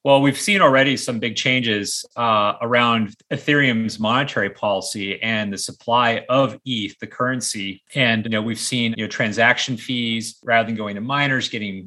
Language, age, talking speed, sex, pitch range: English, 30-49, 170 wpm, male, 110-125 Hz